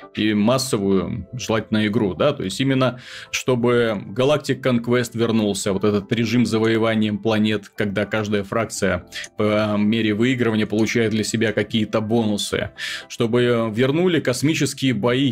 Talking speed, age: 125 wpm, 20-39